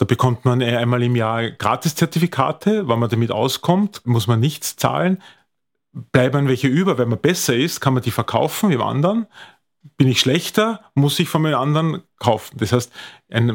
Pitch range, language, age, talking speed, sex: 120-160 Hz, German, 30-49, 180 wpm, male